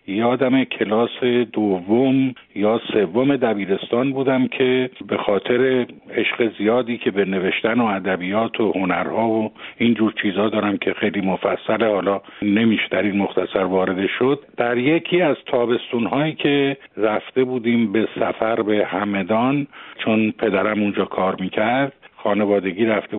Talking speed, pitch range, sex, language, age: 135 wpm, 105-135 Hz, male, Persian, 50-69